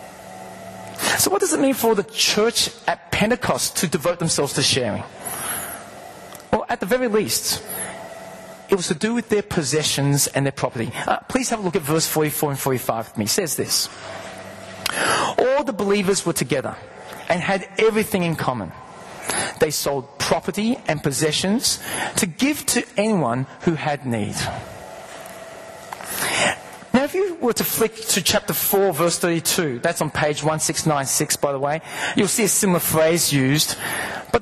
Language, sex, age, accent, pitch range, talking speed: English, male, 30-49, Australian, 150-215 Hz, 160 wpm